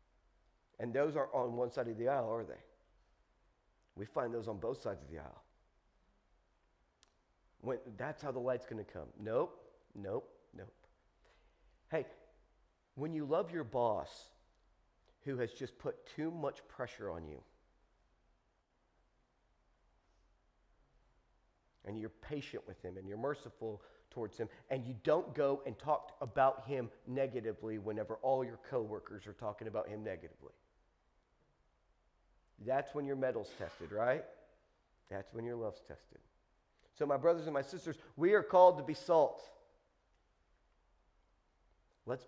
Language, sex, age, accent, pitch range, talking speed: English, male, 40-59, American, 115-165 Hz, 140 wpm